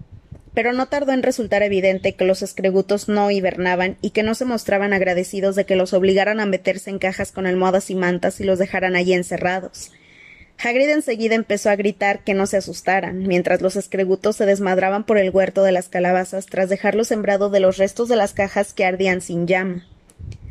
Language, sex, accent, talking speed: Spanish, female, Mexican, 195 wpm